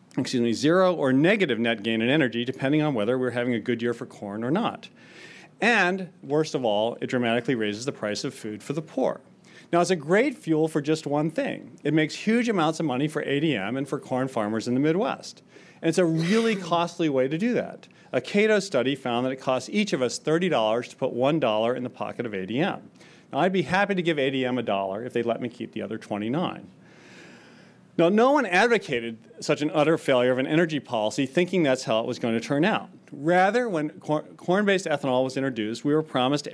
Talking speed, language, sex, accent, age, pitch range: 220 wpm, English, male, American, 40-59, 120-170 Hz